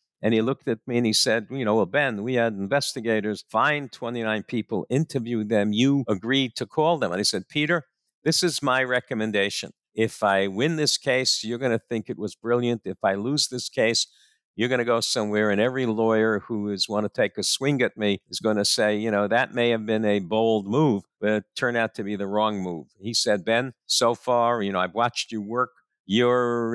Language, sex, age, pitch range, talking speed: English, male, 60-79, 110-125 Hz, 225 wpm